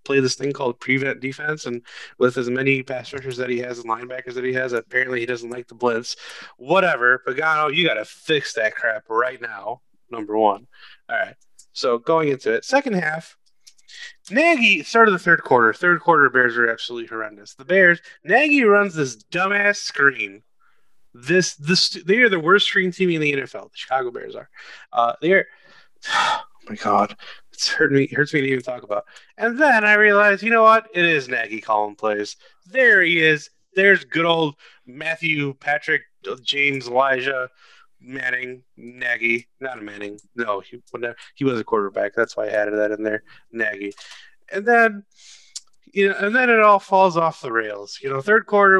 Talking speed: 180 wpm